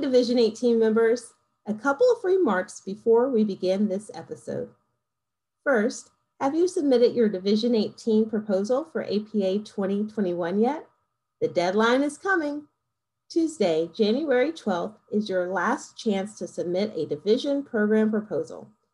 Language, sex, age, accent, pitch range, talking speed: English, female, 40-59, American, 180-245 Hz, 130 wpm